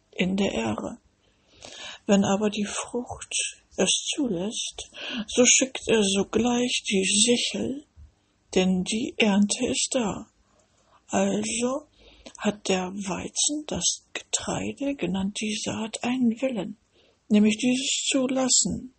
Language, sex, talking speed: English, female, 105 wpm